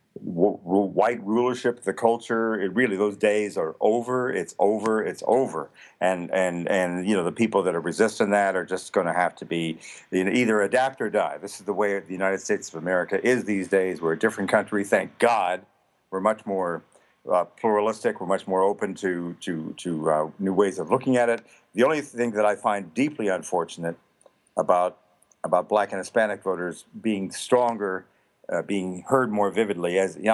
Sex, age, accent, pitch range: male, 50-69, American, 90-110 Hz